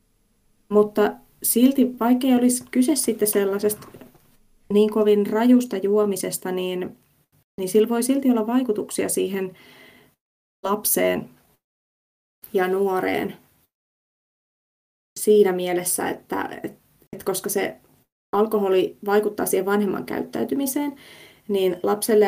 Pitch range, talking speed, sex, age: 185-220 Hz, 95 wpm, female, 20-39